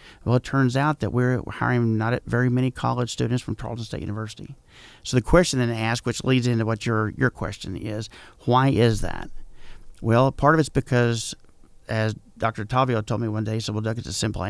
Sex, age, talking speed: male, 50-69, 210 wpm